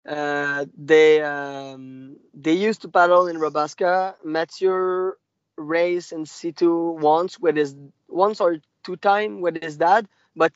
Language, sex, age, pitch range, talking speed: English, male, 20-39, 155-200 Hz, 125 wpm